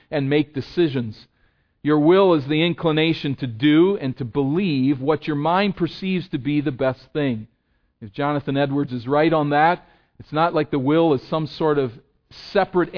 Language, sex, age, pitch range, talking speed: English, male, 40-59, 135-170 Hz, 180 wpm